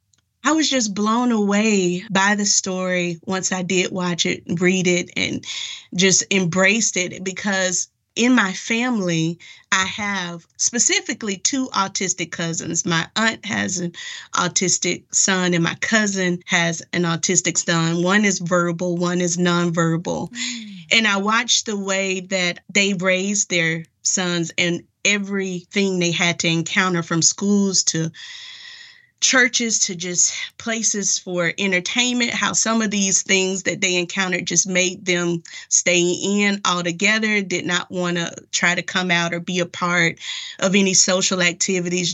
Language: English